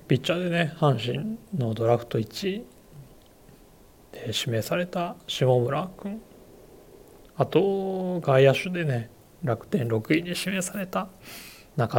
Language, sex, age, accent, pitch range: Japanese, male, 40-59, native, 120-180 Hz